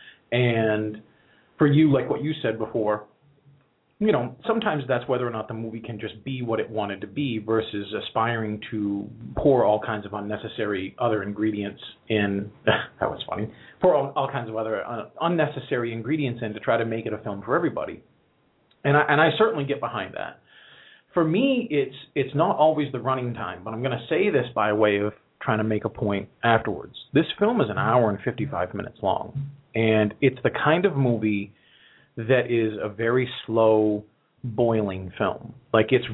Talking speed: 185 wpm